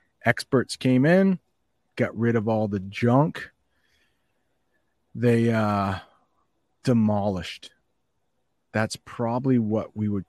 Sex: male